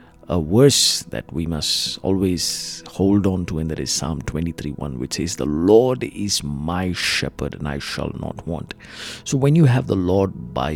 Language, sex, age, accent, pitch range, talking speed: English, male, 50-69, Indian, 80-105 Hz, 190 wpm